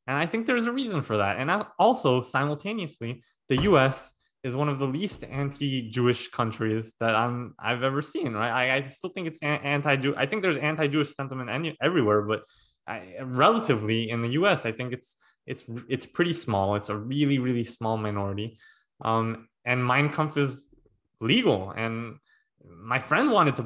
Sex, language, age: male, English, 20-39